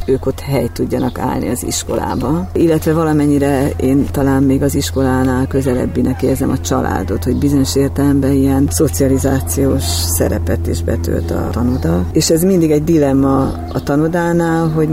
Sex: female